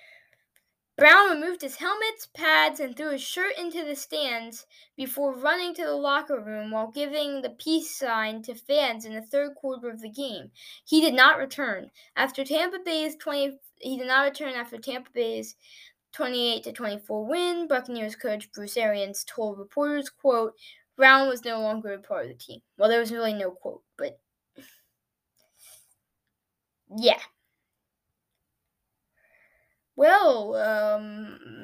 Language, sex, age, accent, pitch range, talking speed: English, female, 10-29, American, 220-300 Hz, 145 wpm